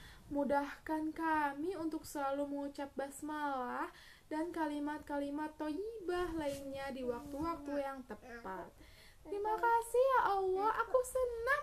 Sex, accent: female, native